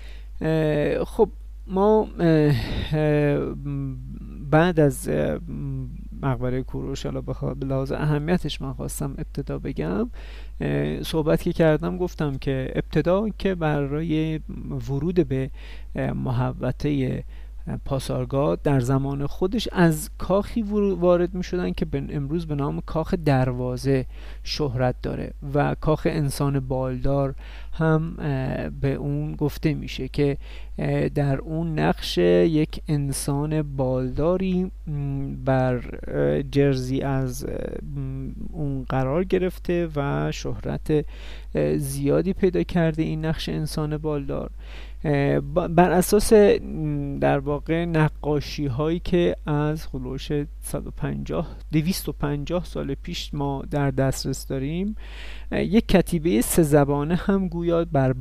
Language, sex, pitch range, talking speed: Persian, male, 130-160 Hz, 100 wpm